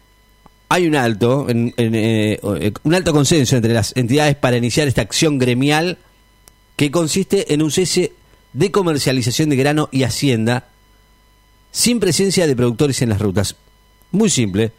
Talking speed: 150 wpm